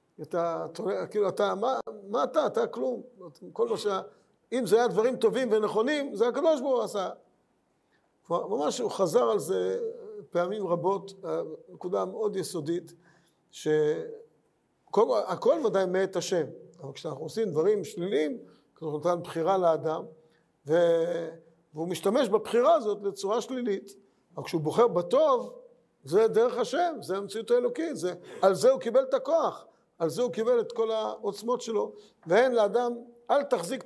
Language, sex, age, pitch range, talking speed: Hebrew, male, 50-69, 175-255 Hz, 145 wpm